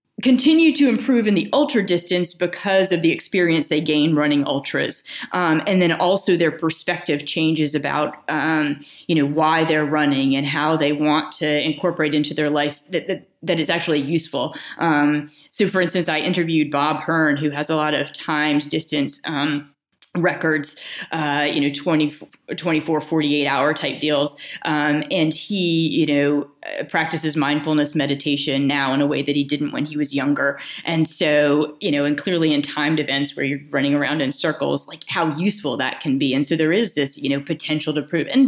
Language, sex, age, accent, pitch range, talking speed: English, female, 30-49, American, 145-180 Hz, 185 wpm